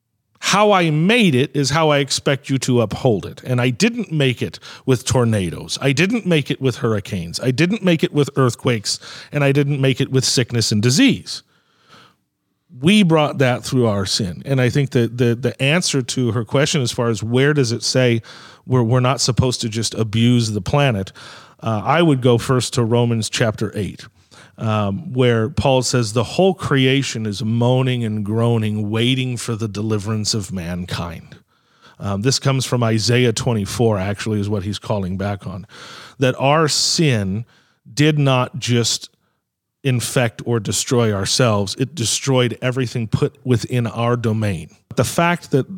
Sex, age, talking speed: male, 40-59, 170 wpm